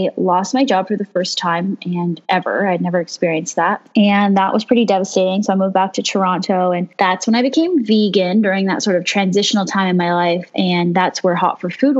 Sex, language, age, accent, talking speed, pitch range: female, English, 10-29, American, 230 wpm, 175-205 Hz